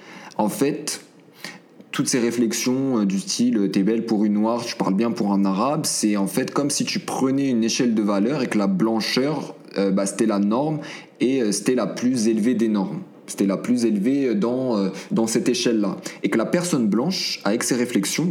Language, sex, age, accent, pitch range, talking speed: French, male, 20-39, French, 100-135 Hz, 200 wpm